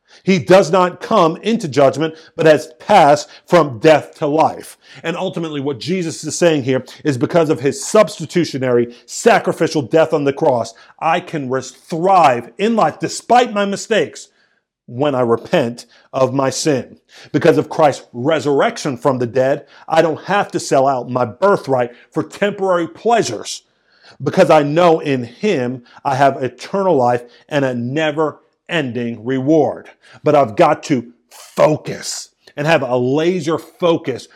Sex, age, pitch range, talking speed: male, 50-69, 135-175 Hz, 150 wpm